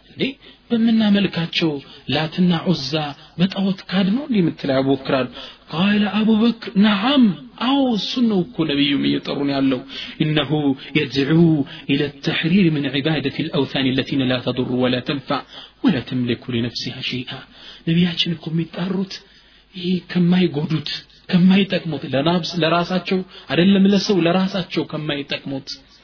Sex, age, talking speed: male, 40-59, 120 wpm